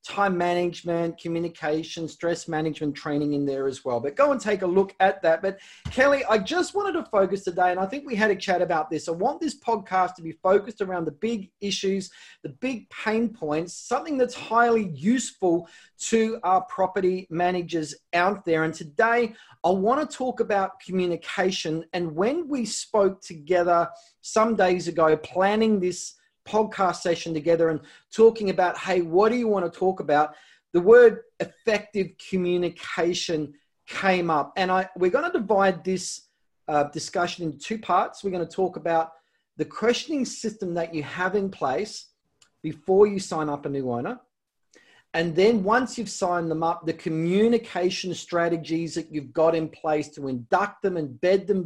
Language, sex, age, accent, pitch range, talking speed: English, male, 30-49, Australian, 165-215 Hz, 175 wpm